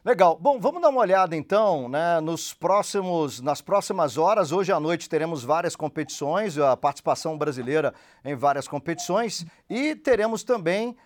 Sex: male